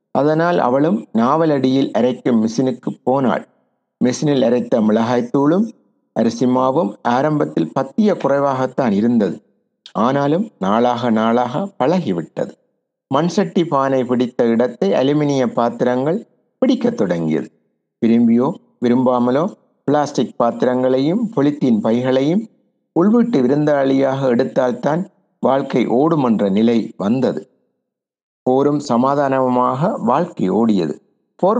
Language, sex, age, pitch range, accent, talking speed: Tamil, male, 60-79, 125-180 Hz, native, 85 wpm